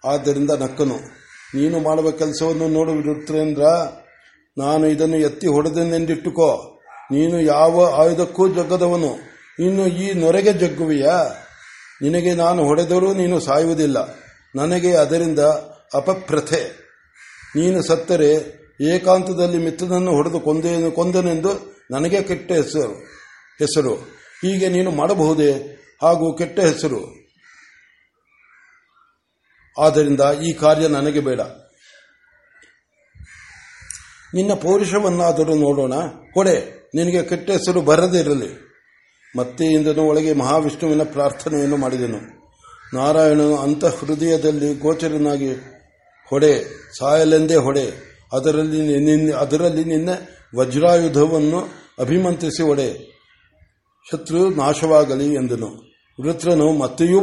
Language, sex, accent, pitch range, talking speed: Kannada, male, native, 150-175 Hz, 80 wpm